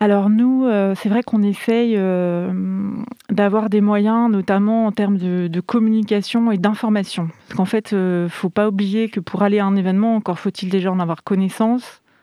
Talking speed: 195 wpm